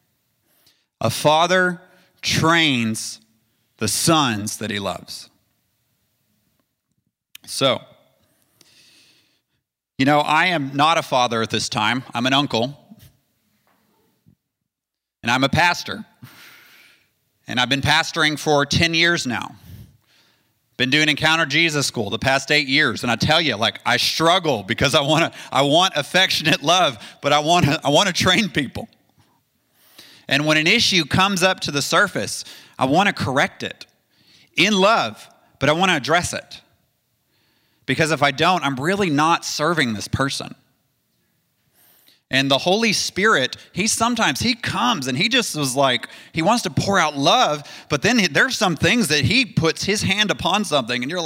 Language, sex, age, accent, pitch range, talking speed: English, male, 30-49, American, 130-175 Hz, 150 wpm